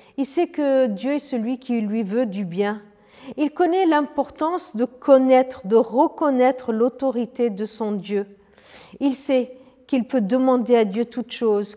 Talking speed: 160 wpm